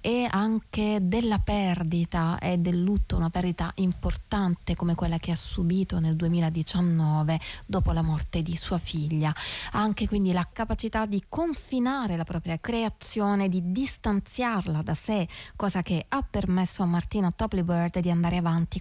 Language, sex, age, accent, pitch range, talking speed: Italian, female, 20-39, native, 170-225 Hz, 150 wpm